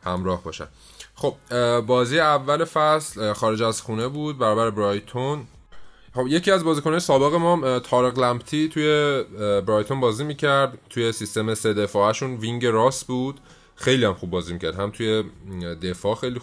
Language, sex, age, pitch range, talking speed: Persian, male, 20-39, 95-130 Hz, 150 wpm